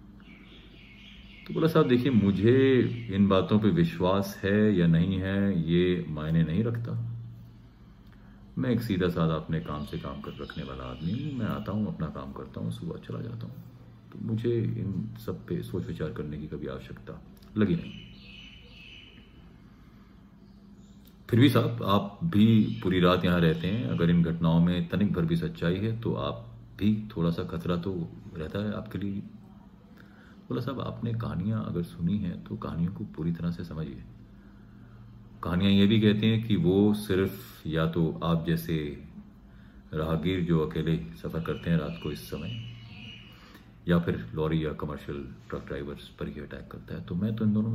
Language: Hindi